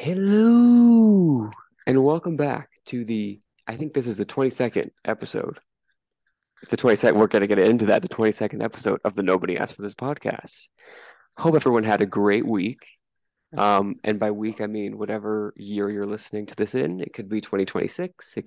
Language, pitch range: English, 105-140 Hz